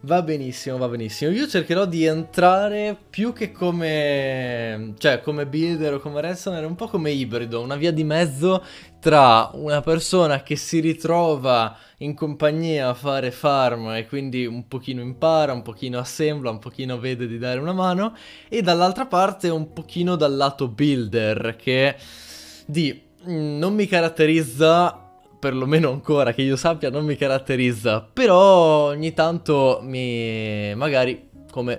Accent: native